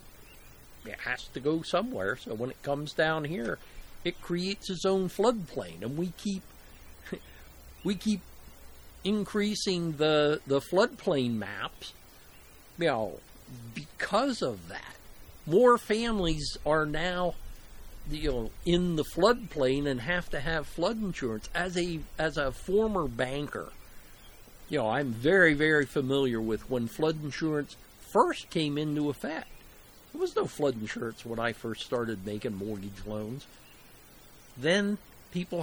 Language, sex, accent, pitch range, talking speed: English, male, American, 125-180 Hz, 135 wpm